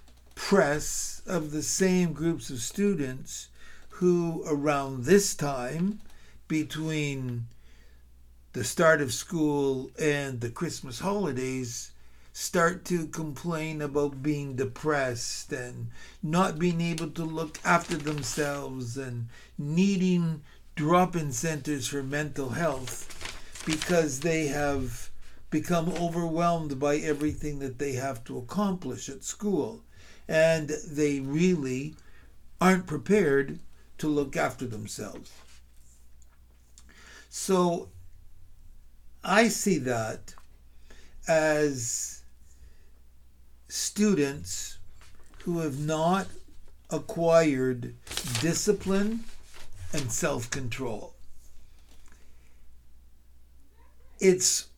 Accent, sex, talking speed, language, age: American, male, 85 wpm, English, 60-79